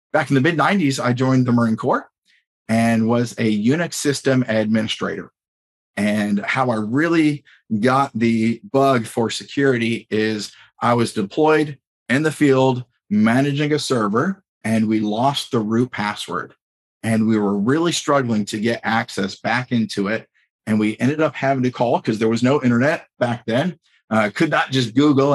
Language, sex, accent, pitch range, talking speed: English, male, American, 110-135 Hz, 170 wpm